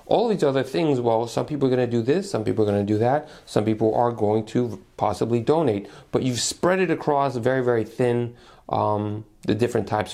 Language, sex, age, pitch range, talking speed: English, male, 40-59, 110-135 Hz, 230 wpm